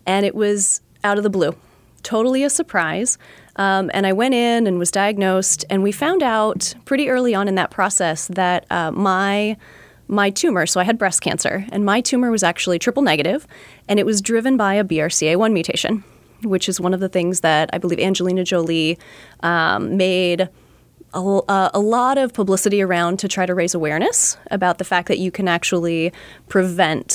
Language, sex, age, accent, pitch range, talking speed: English, female, 20-39, American, 180-220 Hz, 190 wpm